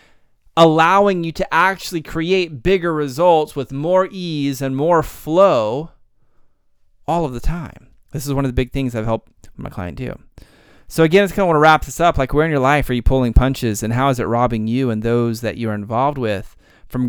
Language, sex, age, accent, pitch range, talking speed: English, male, 30-49, American, 120-155 Hz, 210 wpm